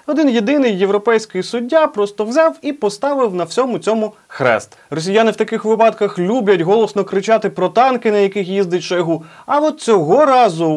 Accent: native